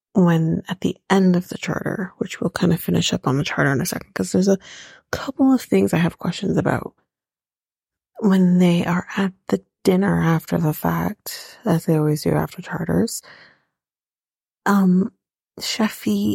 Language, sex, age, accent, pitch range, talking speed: English, female, 30-49, American, 170-195 Hz, 170 wpm